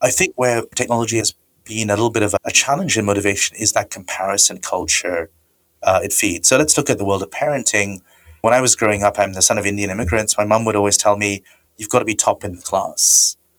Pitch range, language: 95-120 Hz, English